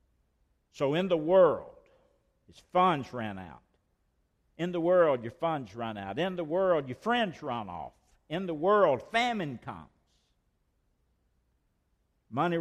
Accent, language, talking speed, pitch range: American, English, 135 wpm, 120-175 Hz